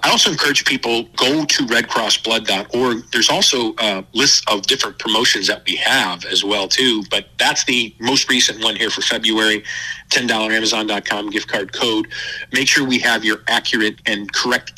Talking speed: 165 wpm